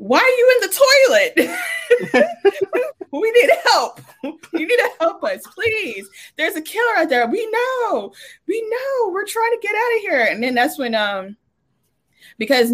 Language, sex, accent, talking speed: English, female, American, 175 wpm